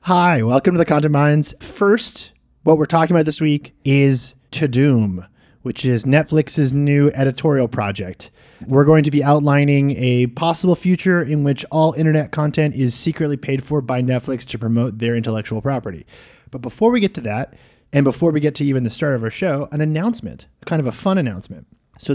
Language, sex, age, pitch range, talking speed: English, male, 30-49, 125-155 Hz, 190 wpm